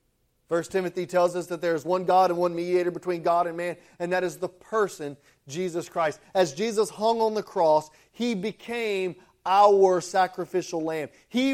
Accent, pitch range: American, 140-215 Hz